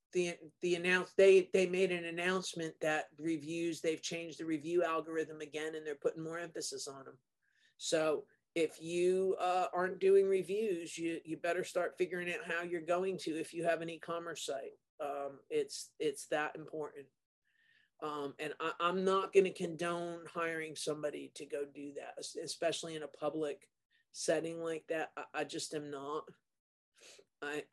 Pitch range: 155-200 Hz